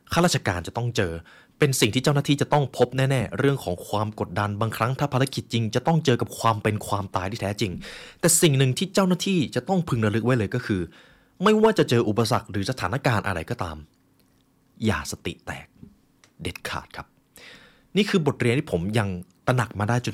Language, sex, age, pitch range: Thai, male, 20-39, 100-140 Hz